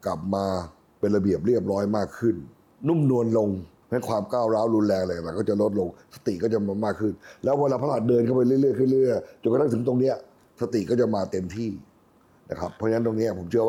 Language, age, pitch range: Thai, 60-79, 105-130 Hz